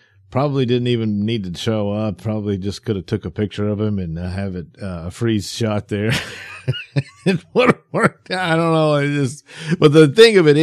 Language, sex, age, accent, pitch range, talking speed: English, male, 50-69, American, 90-125 Hz, 215 wpm